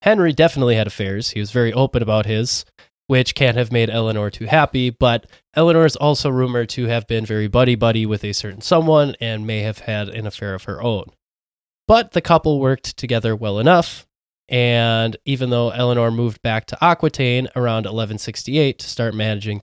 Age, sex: 20-39, male